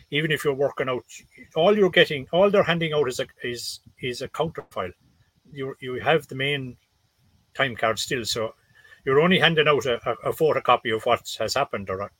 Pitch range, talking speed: 110-145 Hz, 205 wpm